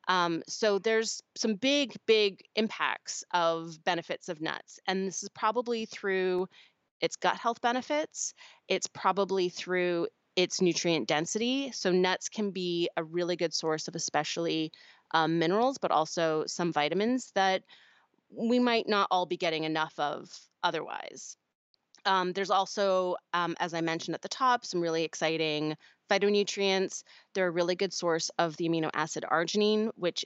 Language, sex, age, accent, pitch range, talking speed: English, female, 30-49, American, 165-200 Hz, 155 wpm